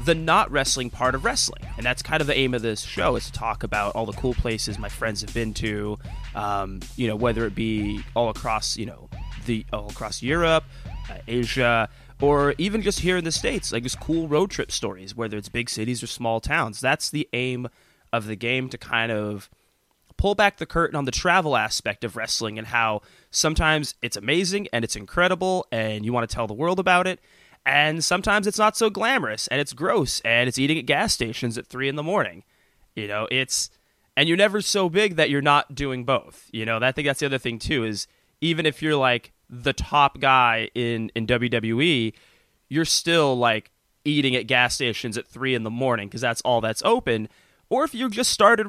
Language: English